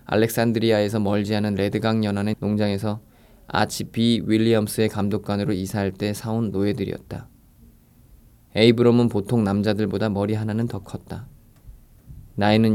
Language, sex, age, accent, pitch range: Korean, male, 20-39, native, 100-115 Hz